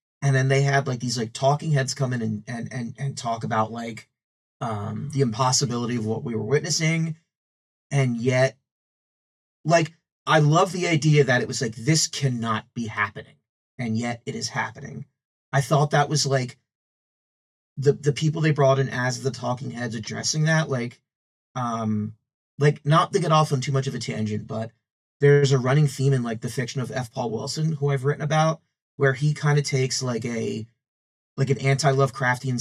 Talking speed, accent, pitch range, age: 190 wpm, American, 120-145 Hz, 30-49